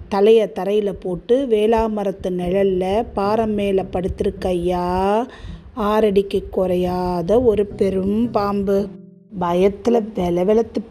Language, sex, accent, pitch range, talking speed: Tamil, female, native, 185-220 Hz, 95 wpm